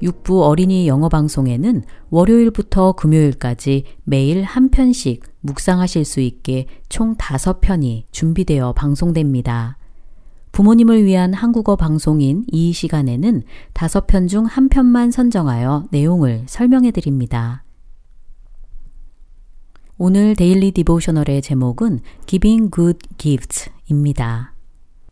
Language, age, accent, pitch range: Korean, 40-59, native, 130-195 Hz